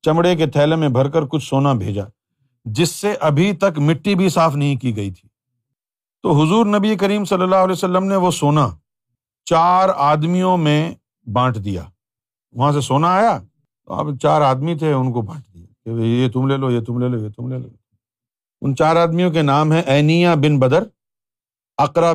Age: 50-69